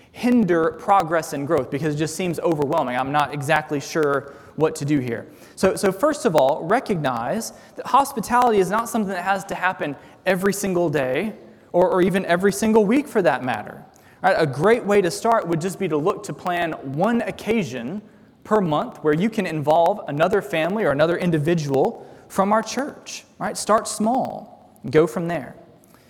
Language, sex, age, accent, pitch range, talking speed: English, male, 20-39, American, 165-220 Hz, 180 wpm